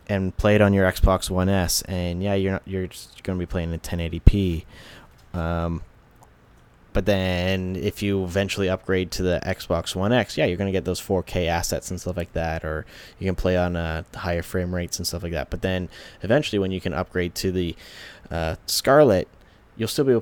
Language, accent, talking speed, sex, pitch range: English, American, 220 wpm, male, 85-100 Hz